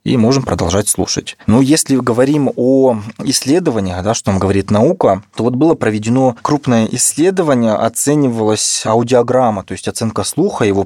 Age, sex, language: 20-39, male, Russian